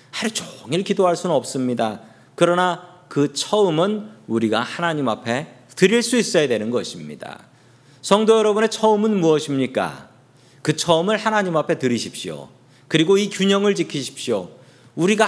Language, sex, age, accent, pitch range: Korean, male, 40-59, native, 120-175 Hz